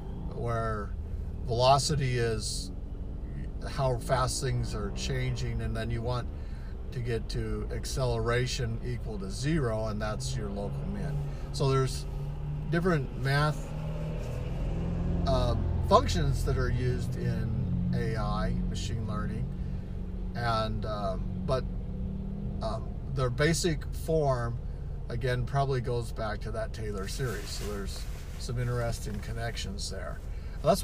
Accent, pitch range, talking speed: American, 85-125 Hz, 115 wpm